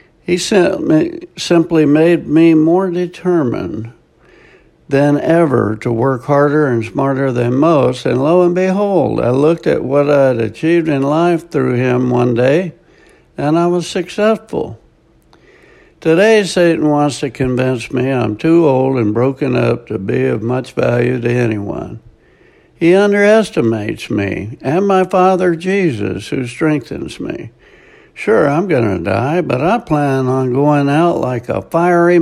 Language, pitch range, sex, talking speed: English, 125-175 Hz, male, 145 wpm